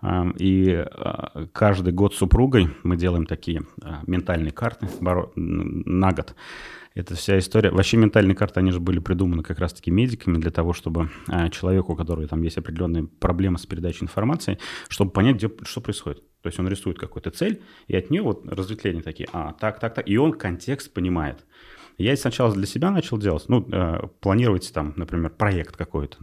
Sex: male